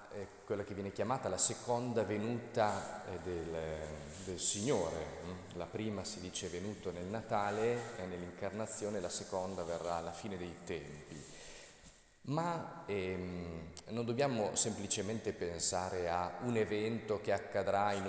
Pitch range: 90-120 Hz